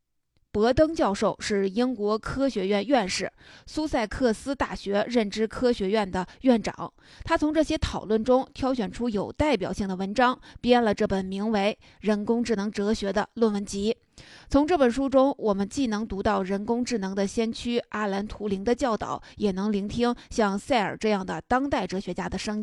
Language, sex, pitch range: Chinese, female, 200-245 Hz